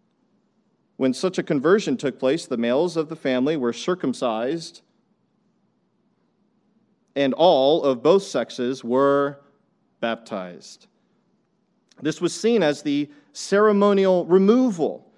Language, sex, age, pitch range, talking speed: English, male, 40-59, 135-215 Hz, 105 wpm